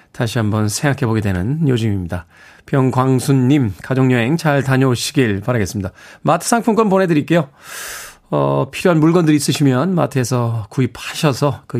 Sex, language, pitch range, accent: male, Korean, 125-165 Hz, native